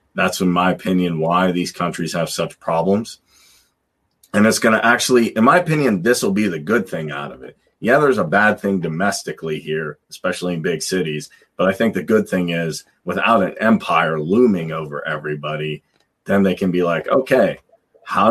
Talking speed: 190 wpm